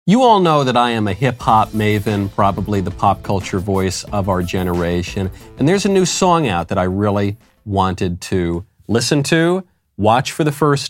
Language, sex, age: English, male, 40-59